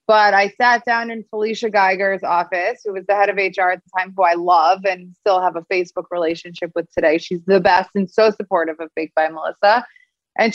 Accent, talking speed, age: American, 220 wpm, 20-39